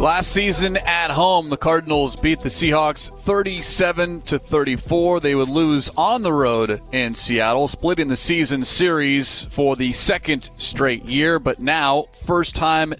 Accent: American